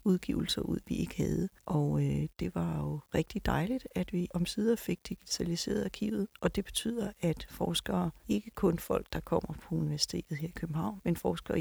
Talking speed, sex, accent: 180 wpm, female, native